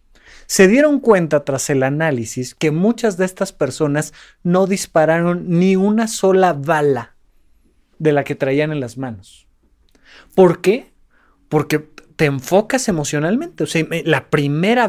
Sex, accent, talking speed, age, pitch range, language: male, Mexican, 135 wpm, 30-49, 135-195 Hz, Spanish